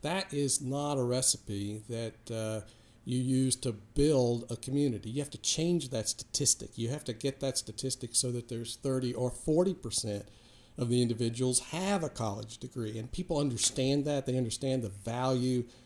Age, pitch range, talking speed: 50-69, 115-135 Hz, 175 wpm